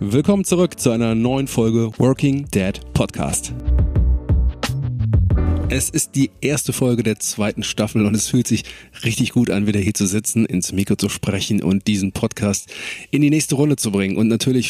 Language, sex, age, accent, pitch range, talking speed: German, male, 40-59, German, 105-130 Hz, 175 wpm